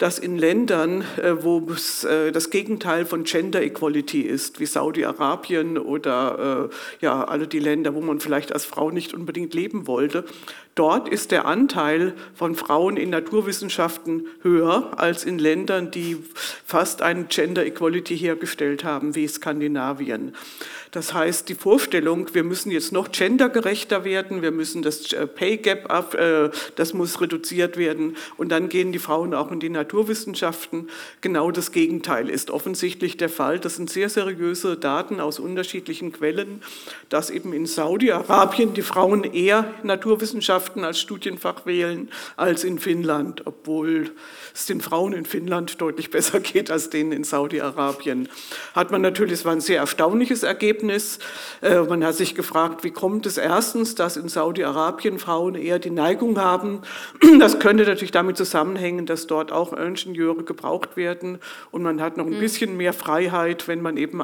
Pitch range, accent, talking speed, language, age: 160-190 Hz, German, 150 wpm, German, 50-69